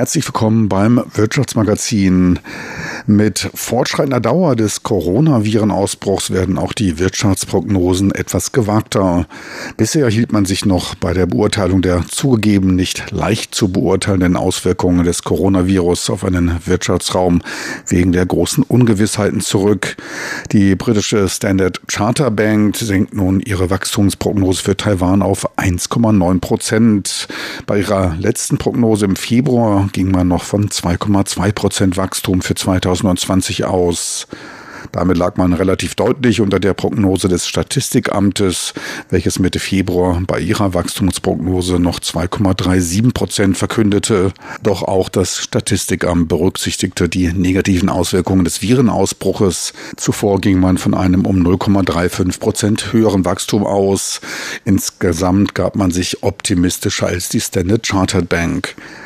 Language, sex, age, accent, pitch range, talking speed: German, male, 50-69, German, 90-105 Hz, 120 wpm